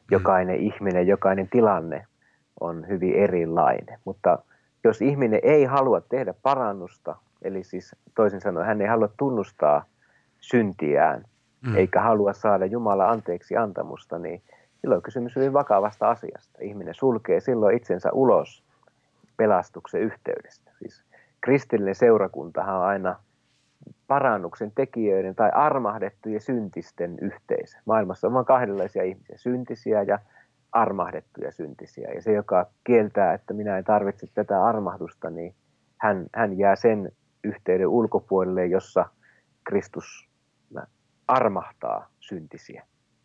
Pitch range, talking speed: 95-120 Hz, 115 wpm